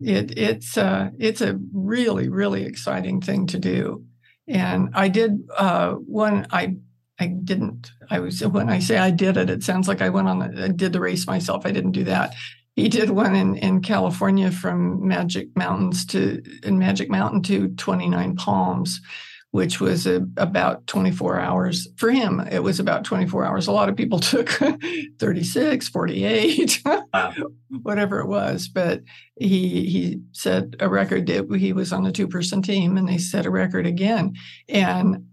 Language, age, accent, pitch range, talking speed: English, 60-79, American, 170-205 Hz, 175 wpm